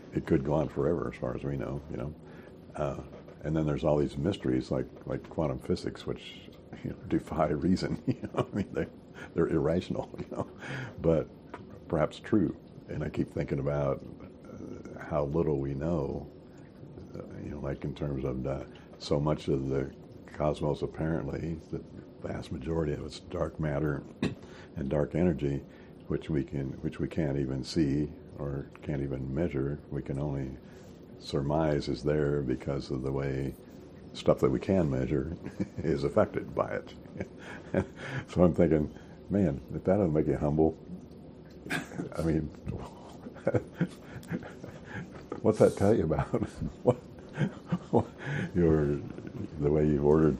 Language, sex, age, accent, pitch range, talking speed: English, male, 60-79, American, 70-80 Hz, 150 wpm